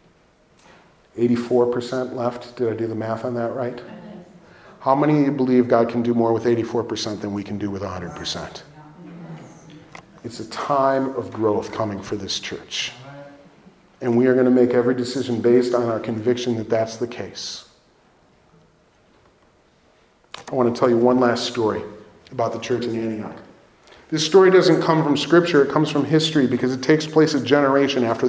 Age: 40-59